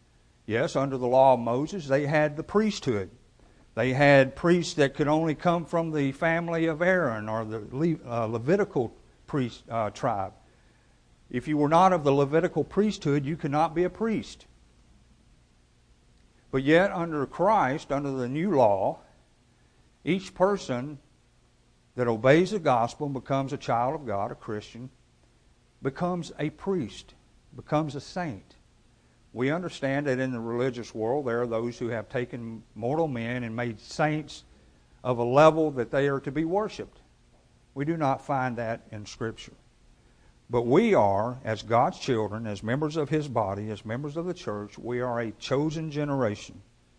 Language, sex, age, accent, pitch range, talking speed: English, male, 60-79, American, 110-155 Hz, 160 wpm